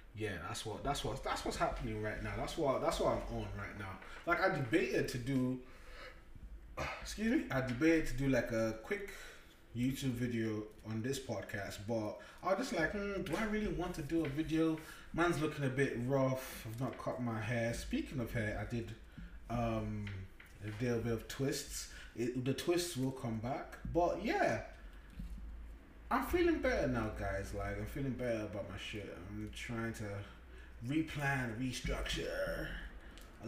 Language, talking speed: English, 175 wpm